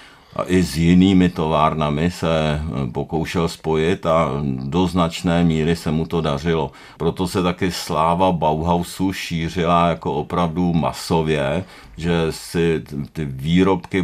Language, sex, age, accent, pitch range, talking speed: Czech, male, 50-69, native, 75-90 Hz, 125 wpm